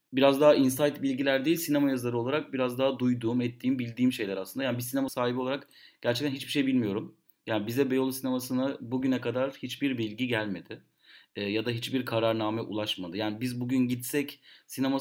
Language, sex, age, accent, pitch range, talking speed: Turkish, male, 30-49, native, 115-145 Hz, 175 wpm